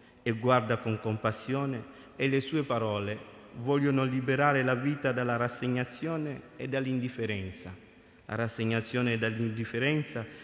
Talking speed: 115 wpm